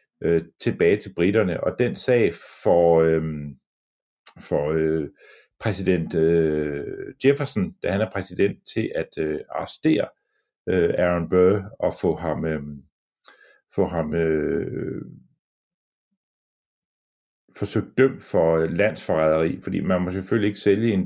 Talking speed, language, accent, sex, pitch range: 95 wpm, Danish, native, male, 80-100 Hz